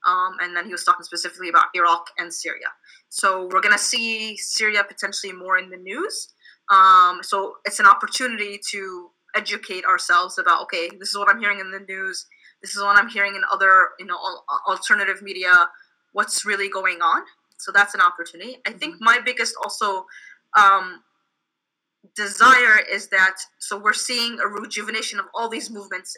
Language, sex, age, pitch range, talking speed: English, female, 20-39, 190-230 Hz, 175 wpm